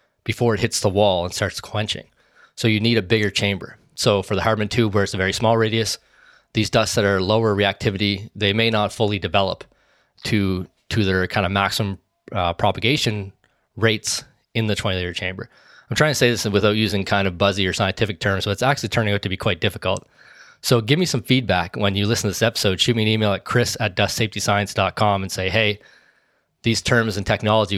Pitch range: 100-115 Hz